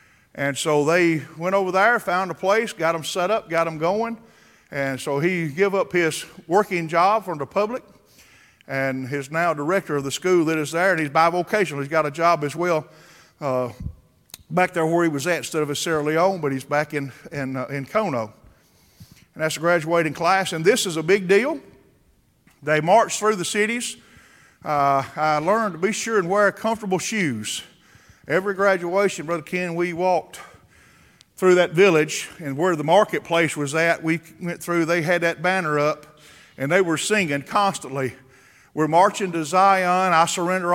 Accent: American